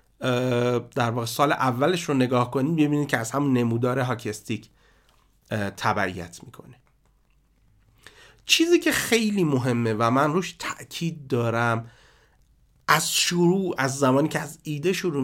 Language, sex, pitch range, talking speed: Persian, male, 115-150 Hz, 130 wpm